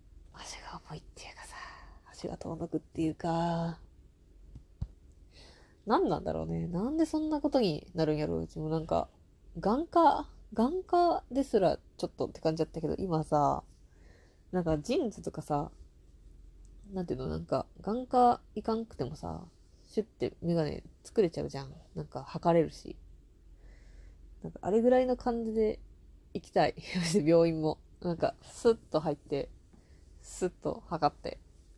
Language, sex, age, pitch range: Japanese, female, 20-39, 150-225 Hz